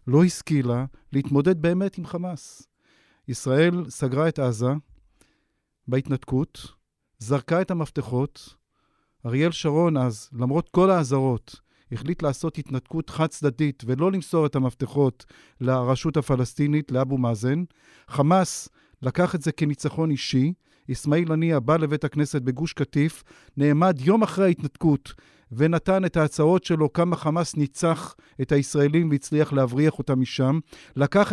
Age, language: 50-69, Hebrew